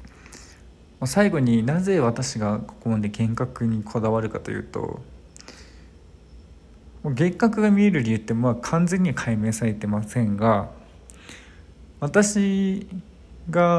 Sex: male